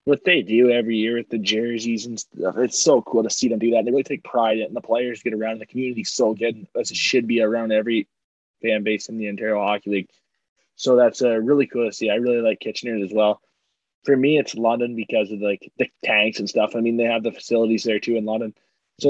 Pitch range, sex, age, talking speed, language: 115-130 Hz, male, 20-39, 250 wpm, English